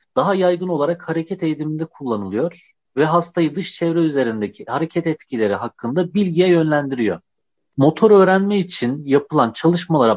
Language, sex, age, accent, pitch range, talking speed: Turkish, male, 40-59, native, 125-170 Hz, 125 wpm